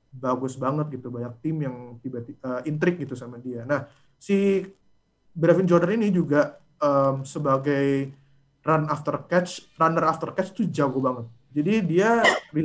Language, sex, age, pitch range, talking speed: Indonesian, male, 20-39, 130-160 Hz, 150 wpm